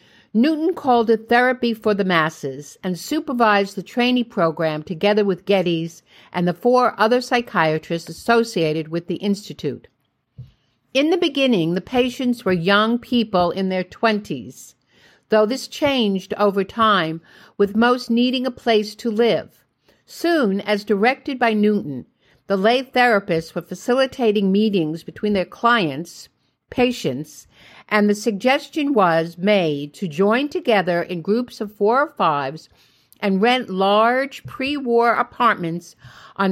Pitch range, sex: 170-240 Hz, female